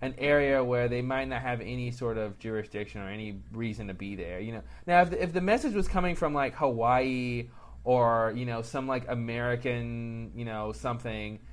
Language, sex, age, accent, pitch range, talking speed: English, male, 20-39, American, 115-150 Hz, 205 wpm